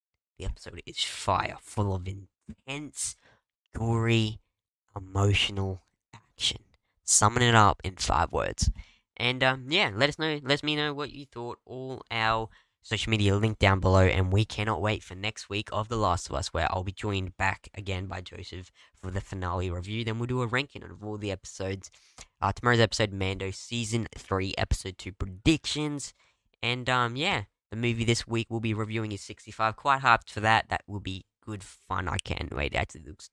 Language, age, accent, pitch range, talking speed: English, 10-29, Australian, 95-115 Hz, 185 wpm